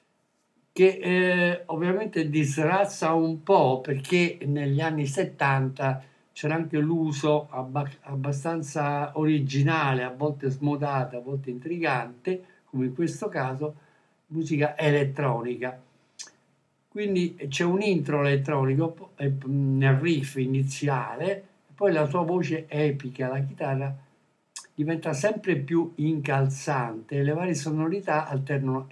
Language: Italian